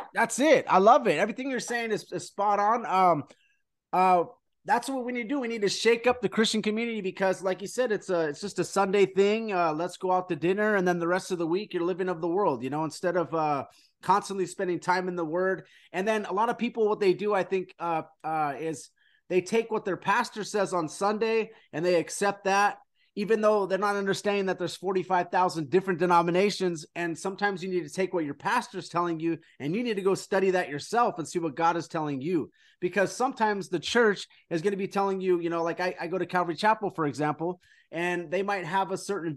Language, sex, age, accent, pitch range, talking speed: English, male, 30-49, American, 170-205 Hz, 240 wpm